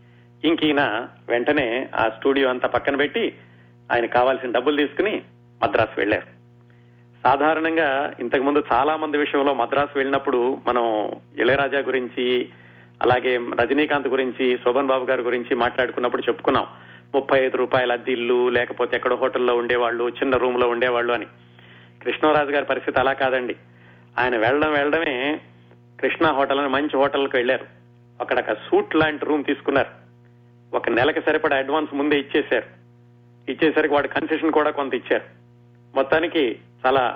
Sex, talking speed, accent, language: male, 125 wpm, native, Telugu